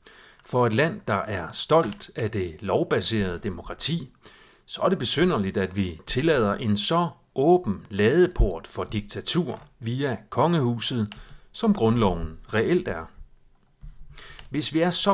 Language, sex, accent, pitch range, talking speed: Danish, male, native, 100-145 Hz, 130 wpm